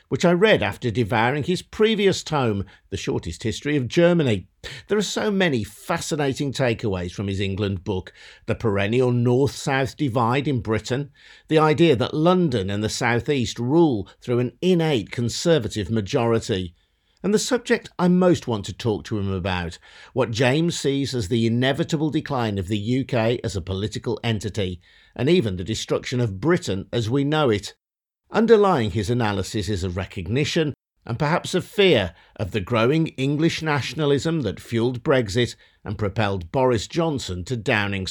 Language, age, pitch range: English, 50-69, 105-155 Hz